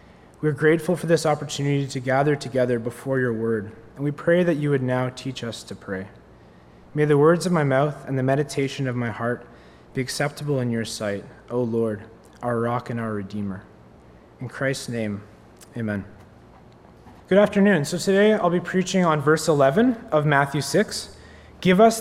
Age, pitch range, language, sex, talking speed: 20-39, 120-175 Hz, English, male, 180 wpm